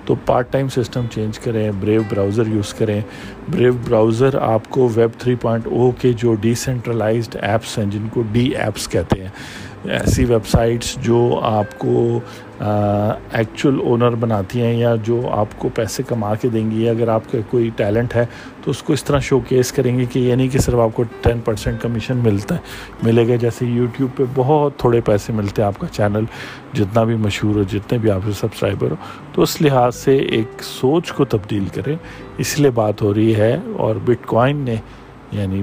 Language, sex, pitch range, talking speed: Urdu, male, 110-130 Hz, 170 wpm